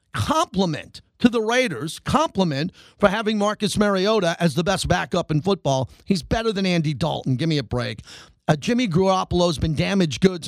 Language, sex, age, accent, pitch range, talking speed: English, male, 50-69, American, 170-230 Hz, 180 wpm